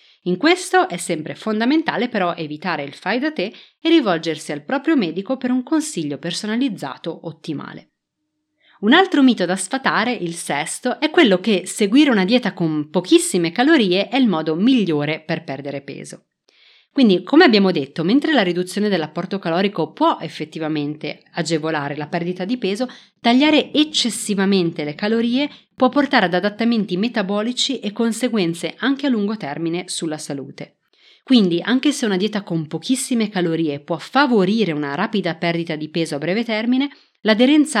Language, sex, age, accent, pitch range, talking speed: Italian, female, 30-49, native, 165-255 Hz, 150 wpm